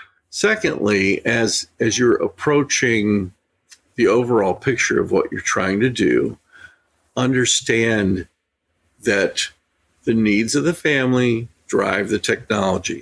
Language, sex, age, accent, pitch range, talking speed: English, male, 50-69, American, 105-135 Hz, 110 wpm